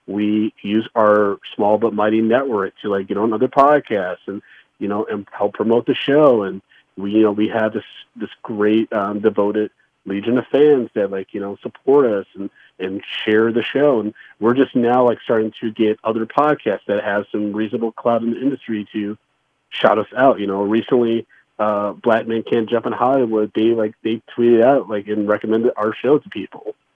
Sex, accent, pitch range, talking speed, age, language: male, American, 105-120 Hz, 200 wpm, 30-49, English